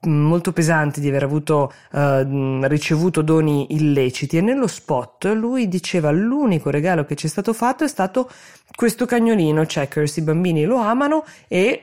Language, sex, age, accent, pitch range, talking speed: Italian, female, 20-39, native, 140-190 Hz, 155 wpm